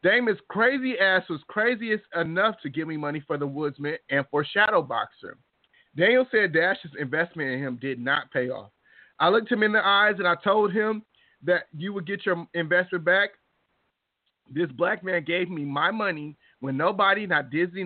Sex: male